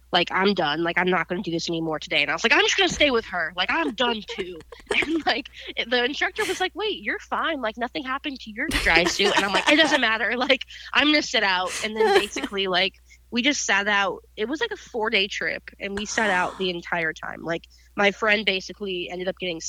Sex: female